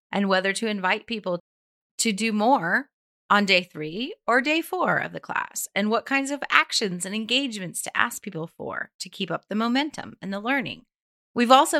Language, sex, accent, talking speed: English, female, American, 195 wpm